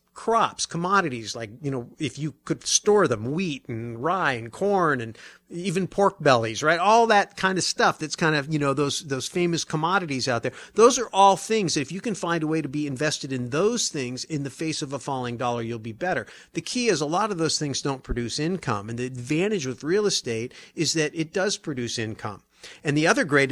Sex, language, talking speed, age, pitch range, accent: male, English, 230 wpm, 50-69, 125-170 Hz, American